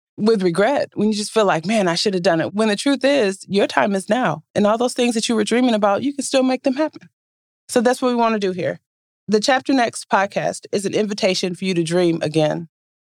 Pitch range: 200-265 Hz